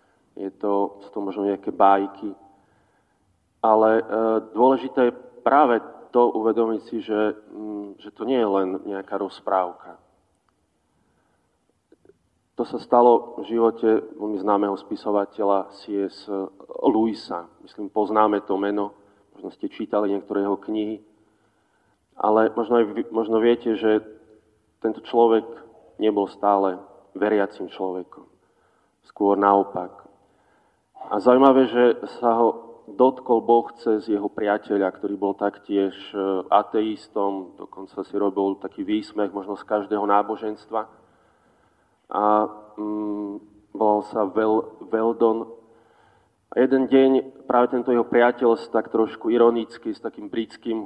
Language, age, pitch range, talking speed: Slovak, 40-59, 100-115 Hz, 115 wpm